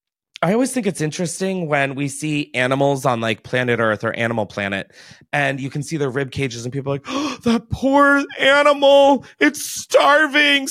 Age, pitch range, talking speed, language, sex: 30-49, 125-190 Hz, 185 wpm, English, male